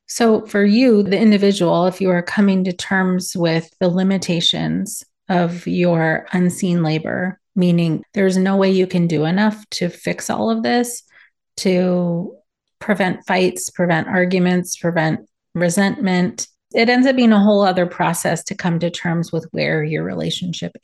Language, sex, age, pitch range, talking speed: English, female, 30-49, 170-200 Hz, 155 wpm